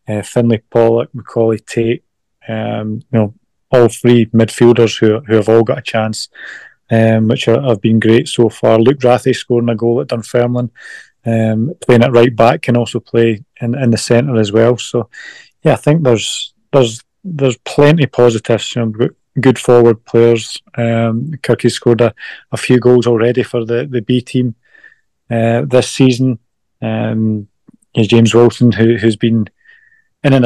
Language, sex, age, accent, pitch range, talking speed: English, male, 20-39, British, 115-125 Hz, 165 wpm